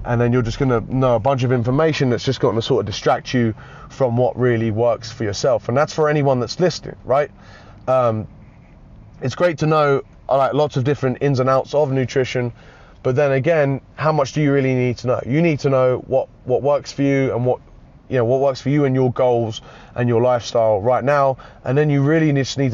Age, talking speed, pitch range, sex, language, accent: 20-39, 225 wpm, 115-140 Hz, male, English, British